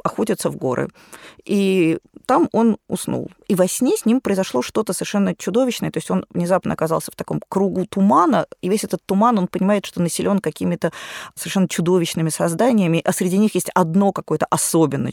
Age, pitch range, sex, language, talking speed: 20-39, 165-210 Hz, female, Russian, 175 wpm